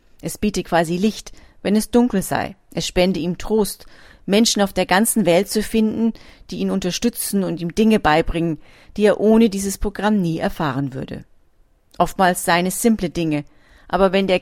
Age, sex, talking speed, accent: 40-59, female, 175 wpm, German